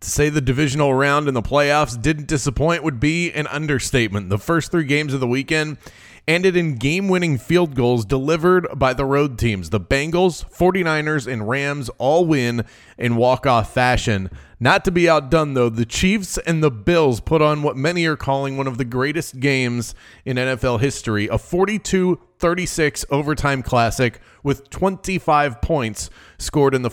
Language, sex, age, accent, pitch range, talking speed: English, male, 30-49, American, 125-155 Hz, 170 wpm